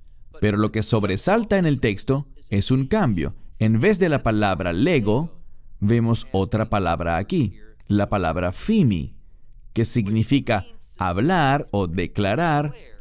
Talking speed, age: 130 wpm, 40-59